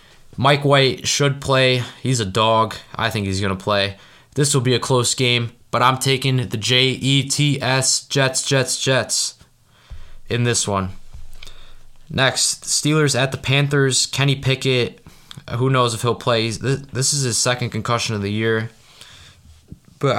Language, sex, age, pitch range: English, male, 20-39, 110-130 Hz